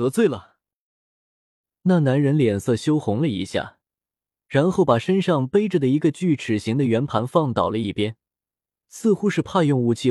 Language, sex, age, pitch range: Chinese, male, 20-39, 110-160 Hz